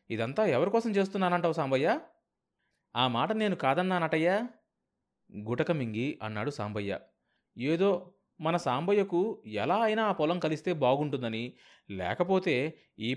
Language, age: Telugu, 20-39